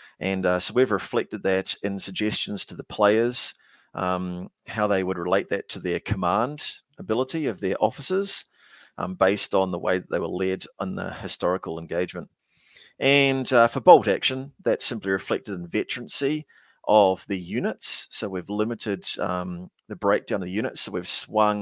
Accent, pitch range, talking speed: Australian, 95-115 Hz, 170 wpm